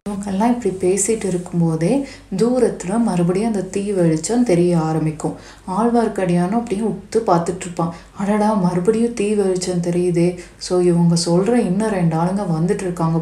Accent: native